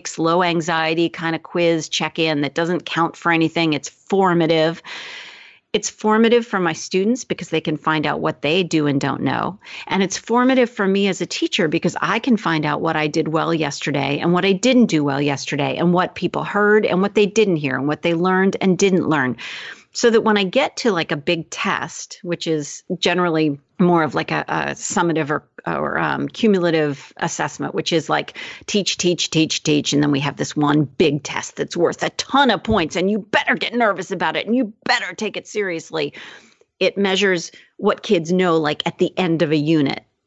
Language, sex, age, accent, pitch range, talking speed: English, female, 40-59, American, 160-205 Hz, 205 wpm